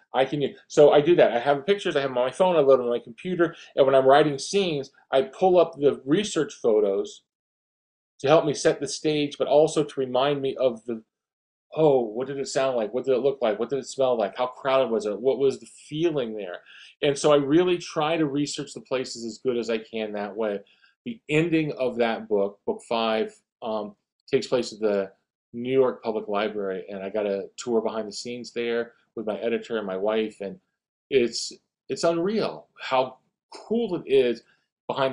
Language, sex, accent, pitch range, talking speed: English, male, American, 110-155 Hz, 215 wpm